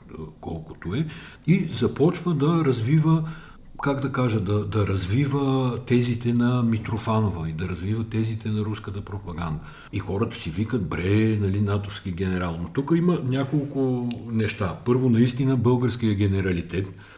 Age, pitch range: 50-69, 95-115 Hz